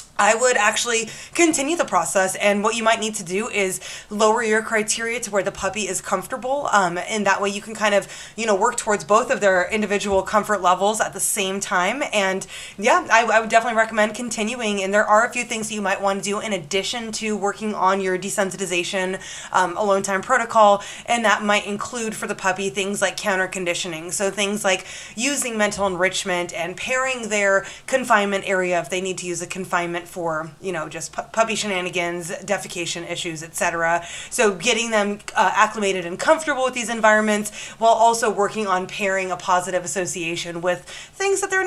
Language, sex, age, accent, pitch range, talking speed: English, female, 20-39, American, 185-225 Hz, 195 wpm